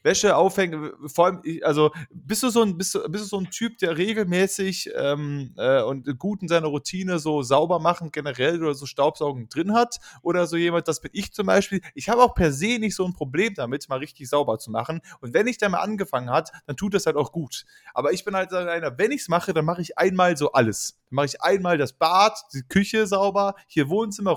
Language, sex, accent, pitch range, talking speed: German, male, German, 135-185 Hz, 235 wpm